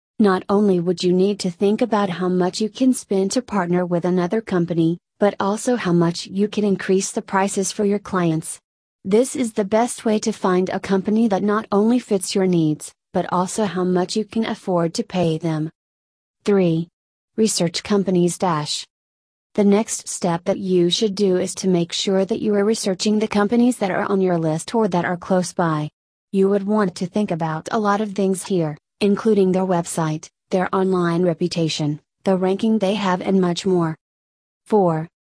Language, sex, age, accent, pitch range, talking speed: English, female, 30-49, American, 175-205 Hz, 190 wpm